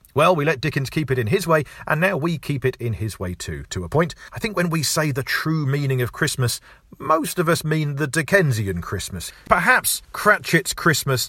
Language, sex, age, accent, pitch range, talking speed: English, male, 40-59, British, 120-170 Hz, 220 wpm